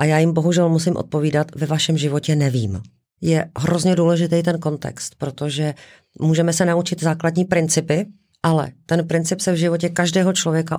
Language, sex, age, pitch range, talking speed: Czech, female, 40-59, 155-185 Hz, 160 wpm